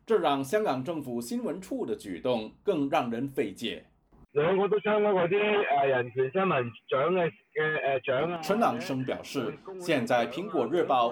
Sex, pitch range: male, 140-210 Hz